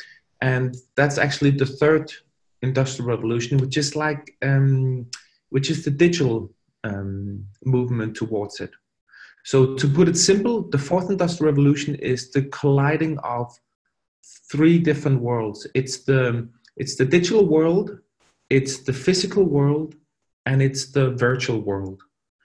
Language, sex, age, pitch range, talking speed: English, male, 30-49, 130-155 Hz, 135 wpm